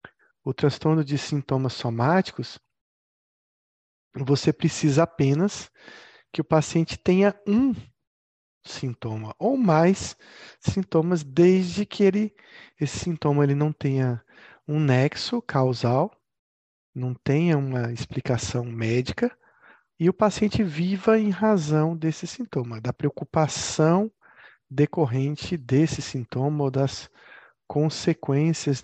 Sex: male